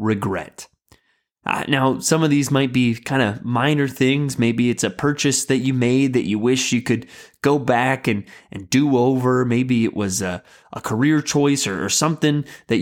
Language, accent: English, American